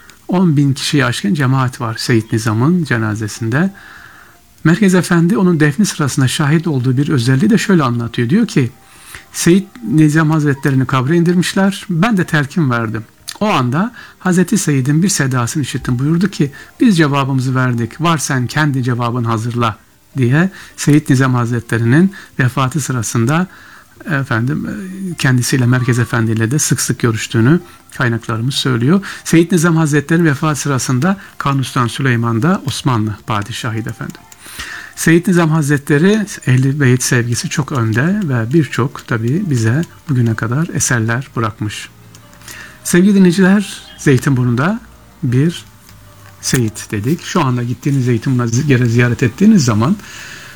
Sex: male